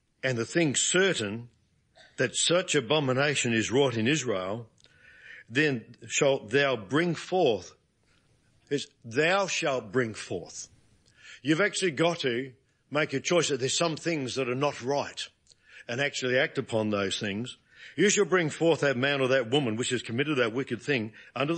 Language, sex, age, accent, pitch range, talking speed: English, male, 50-69, Australian, 115-145 Hz, 160 wpm